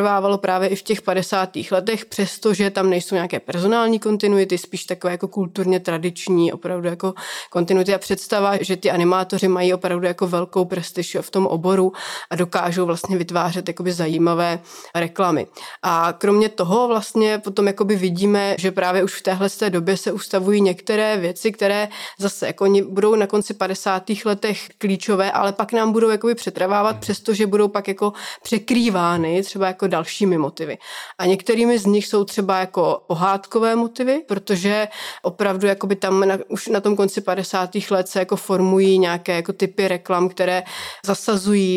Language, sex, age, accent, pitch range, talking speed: Czech, female, 30-49, native, 180-205 Hz, 150 wpm